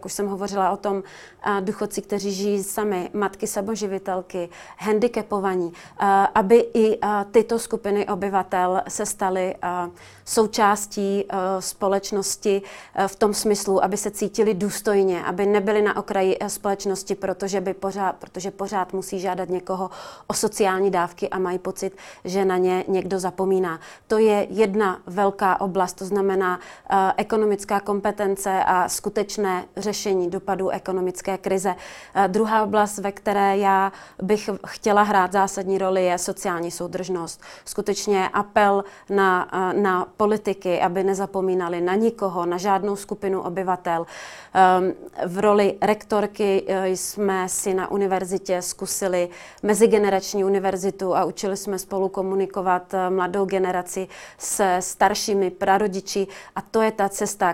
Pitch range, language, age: 185-205 Hz, Czech, 30-49